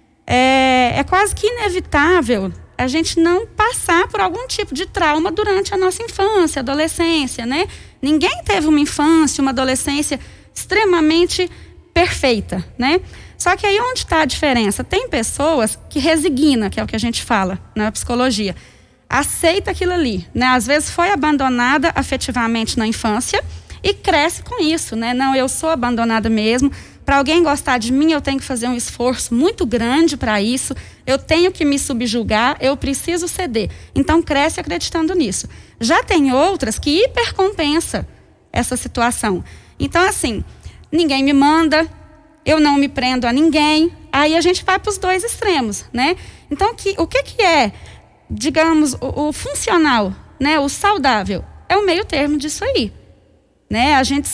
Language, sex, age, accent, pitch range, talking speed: Portuguese, female, 20-39, Brazilian, 255-355 Hz, 160 wpm